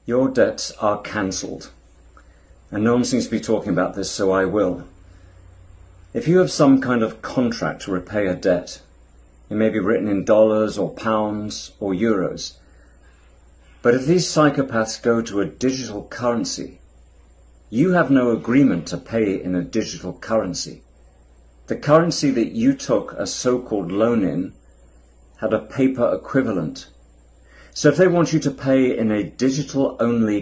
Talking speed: 155 wpm